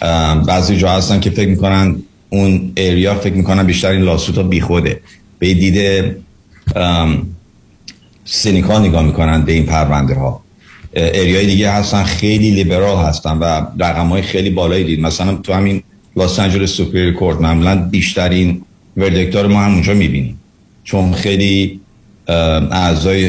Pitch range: 85-100 Hz